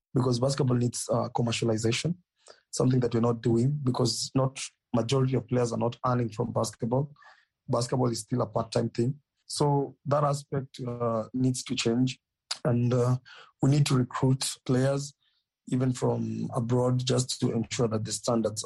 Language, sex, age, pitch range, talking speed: English, male, 30-49, 115-130 Hz, 160 wpm